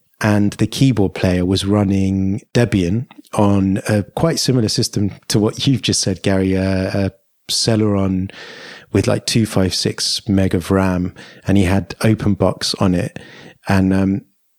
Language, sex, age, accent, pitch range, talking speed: English, male, 30-49, British, 95-115 Hz, 150 wpm